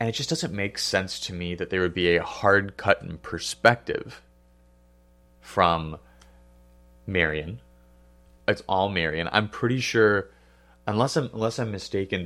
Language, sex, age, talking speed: English, male, 30-49, 140 wpm